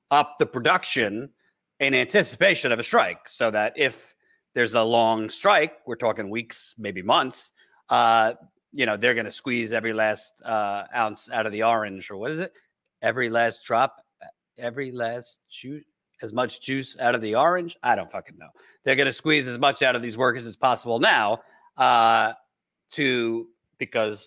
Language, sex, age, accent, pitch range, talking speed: English, male, 40-59, American, 110-135 Hz, 180 wpm